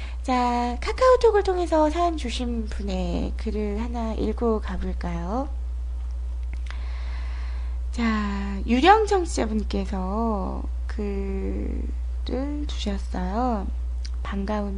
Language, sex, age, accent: Korean, female, 20-39, native